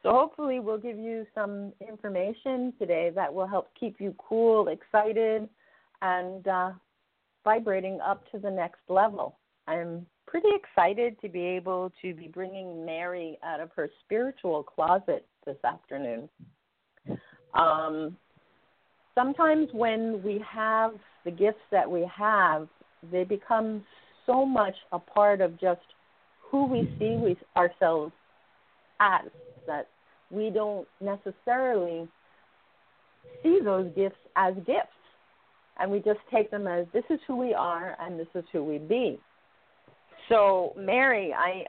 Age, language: 40-59, English